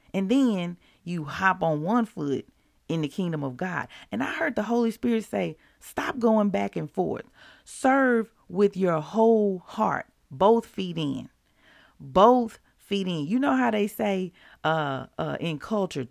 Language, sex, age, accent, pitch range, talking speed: English, female, 40-59, American, 160-210 Hz, 165 wpm